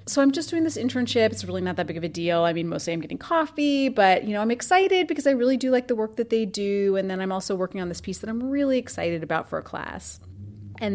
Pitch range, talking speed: 170-265 Hz, 285 wpm